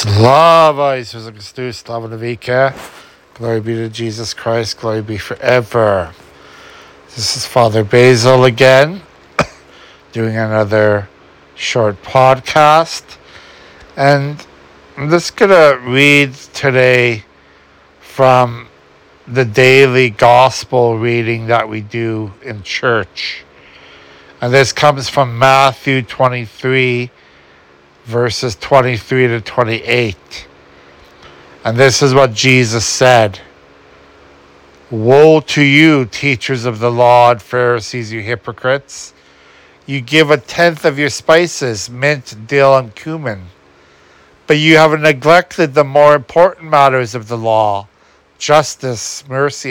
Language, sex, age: English, male, 60-79